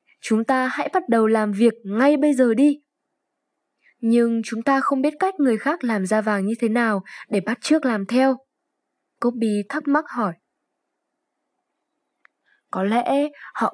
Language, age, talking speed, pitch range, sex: Vietnamese, 10-29, 160 wpm, 210-285 Hz, female